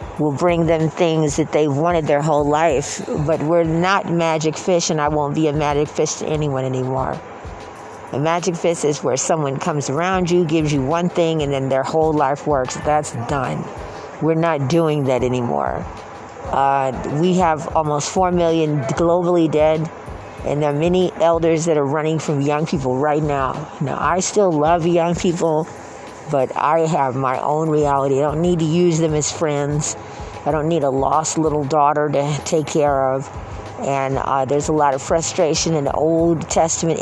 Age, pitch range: 50-69, 140-165 Hz